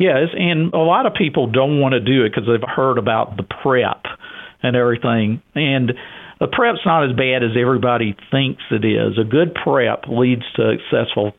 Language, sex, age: English, male, 50-69